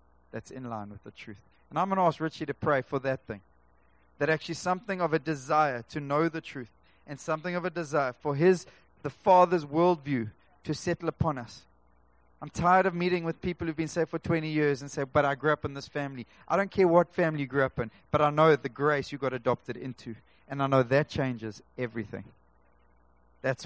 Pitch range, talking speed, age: 105-170 Hz, 220 wpm, 30-49